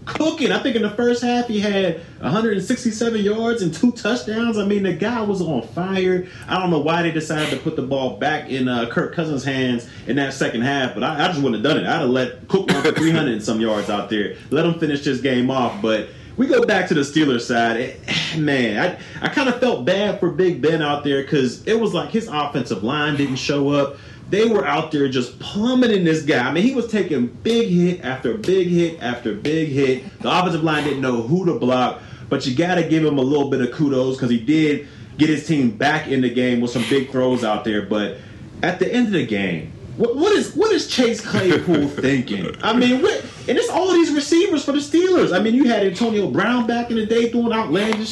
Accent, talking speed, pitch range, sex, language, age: American, 235 wpm, 135-220 Hz, male, English, 30-49